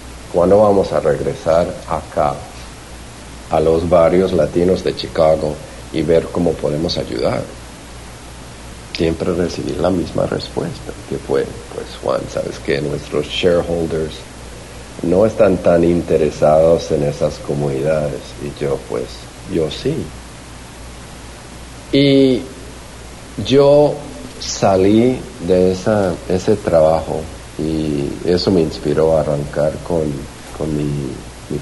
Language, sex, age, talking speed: Spanish, male, 50-69, 110 wpm